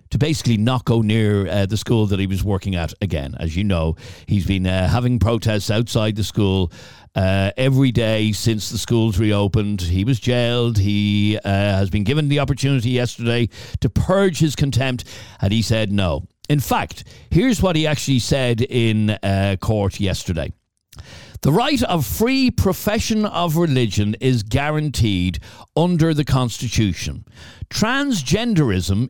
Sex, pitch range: male, 105-160 Hz